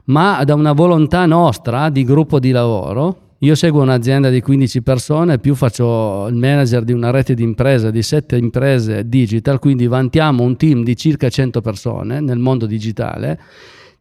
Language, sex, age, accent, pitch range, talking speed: Italian, male, 40-59, native, 120-150 Hz, 165 wpm